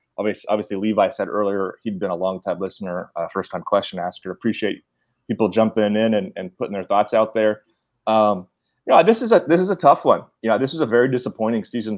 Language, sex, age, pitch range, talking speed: English, male, 30-49, 95-110 Hz, 230 wpm